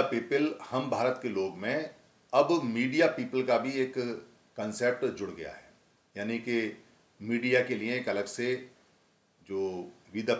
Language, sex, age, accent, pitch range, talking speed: Hindi, male, 50-69, native, 110-145 Hz, 150 wpm